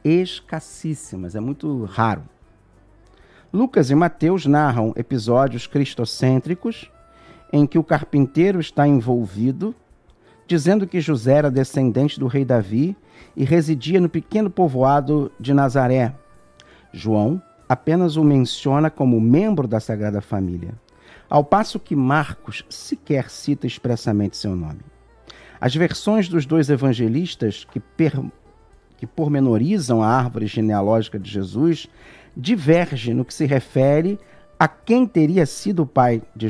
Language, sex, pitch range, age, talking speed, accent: Portuguese, male, 115-160 Hz, 50-69, 125 wpm, Brazilian